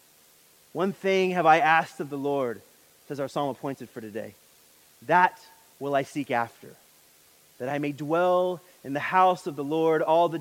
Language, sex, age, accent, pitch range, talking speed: English, male, 30-49, American, 140-205 Hz, 180 wpm